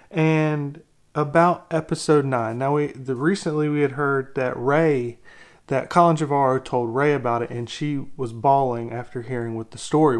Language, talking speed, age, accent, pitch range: English, 170 wpm, 30-49, American, 130-165 Hz